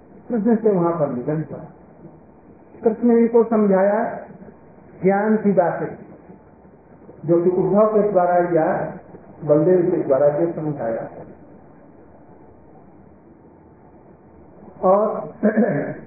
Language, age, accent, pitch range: Hindi, 50-69, native, 170-215 Hz